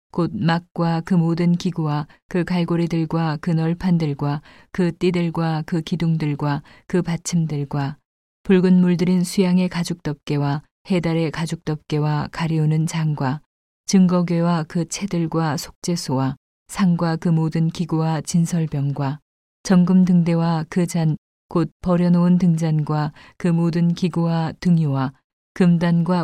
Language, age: Korean, 40-59